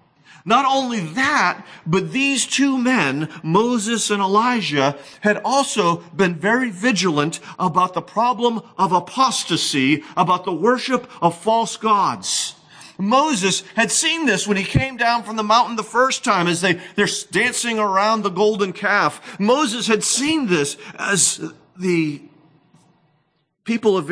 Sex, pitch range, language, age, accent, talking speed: male, 140-210 Hz, English, 40-59, American, 140 wpm